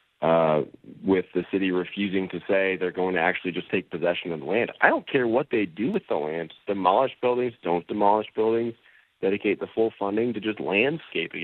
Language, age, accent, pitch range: English, 40-59, American, 95-115 Hz